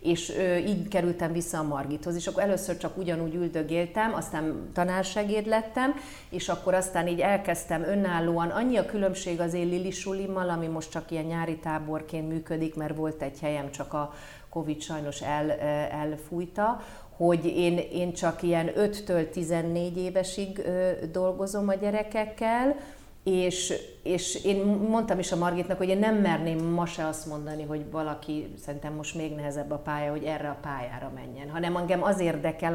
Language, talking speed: Hungarian, 160 wpm